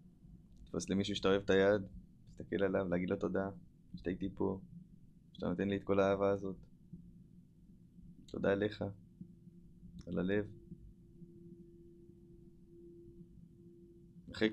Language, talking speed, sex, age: Hebrew, 100 wpm, male, 20-39